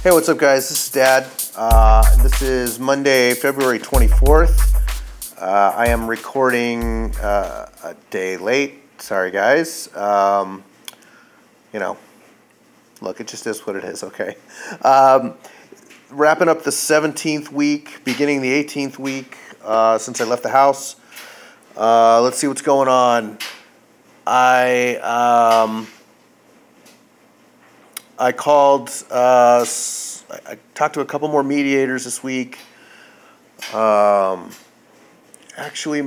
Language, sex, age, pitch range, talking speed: English, male, 30-49, 110-140 Hz, 120 wpm